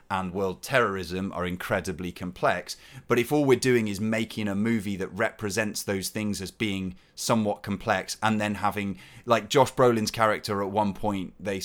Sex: male